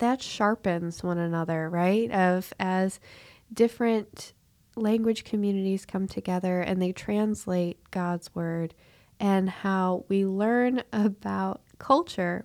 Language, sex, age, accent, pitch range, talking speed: English, female, 20-39, American, 180-215 Hz, 110 wpm